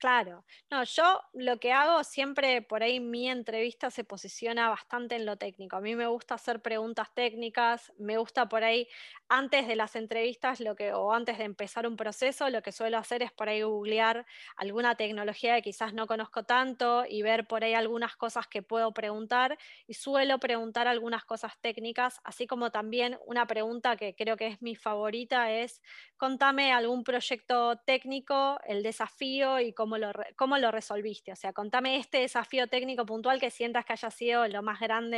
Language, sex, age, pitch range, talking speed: Spanish, female, 20-39, 220-245 Hz, 185 wpm